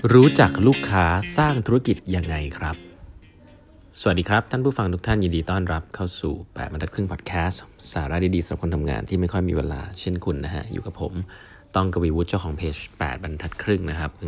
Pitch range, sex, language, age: 80-100 Hz, male, Thai, 20-39